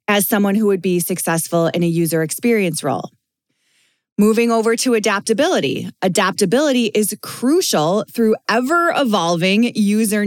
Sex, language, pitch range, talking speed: female, English, 185-235 Hz, 125 wpm